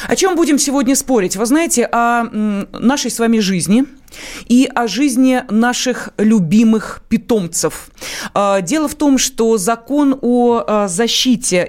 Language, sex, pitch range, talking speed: Russian, female, 200-260 Hz, 130 wpm